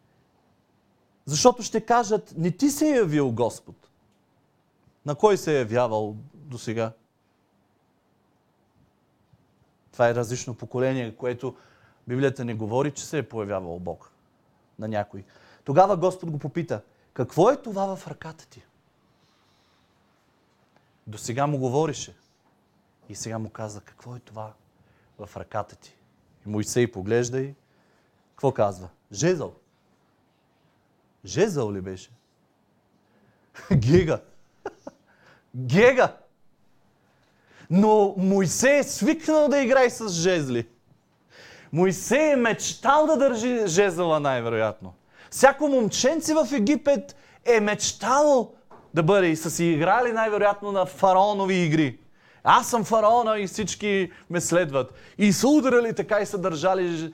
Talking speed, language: 120 wpm, Bulgarian